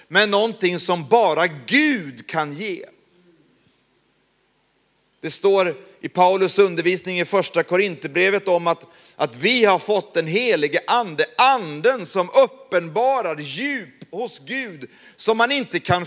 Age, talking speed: 40-59, 125 wpm